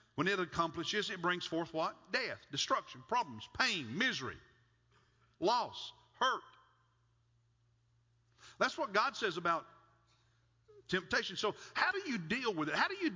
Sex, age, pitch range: male, 50-69, 120-200 Hz